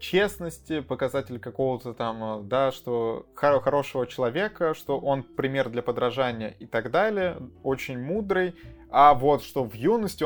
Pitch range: 115-150 Hz